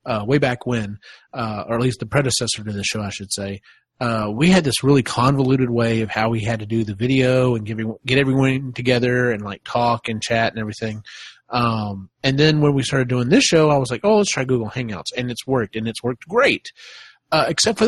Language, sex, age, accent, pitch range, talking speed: English, male, 30-49, American, 115-145 Hz, 235 wpm